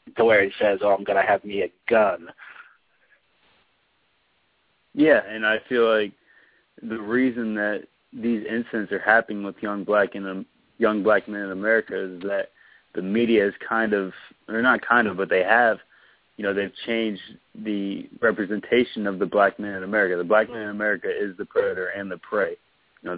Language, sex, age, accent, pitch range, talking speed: English, male, 20-39, American, 95-105 Hz, 185 wpm